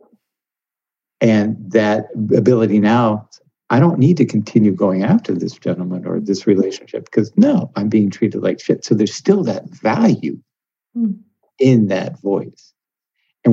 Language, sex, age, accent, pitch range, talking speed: English, male, 60-79, American, 110-150 Hz, 140 wpm